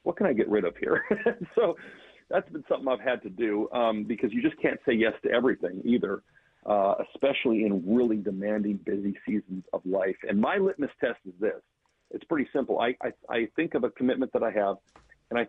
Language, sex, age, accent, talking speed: English, male, 50-69, American, 215 wpm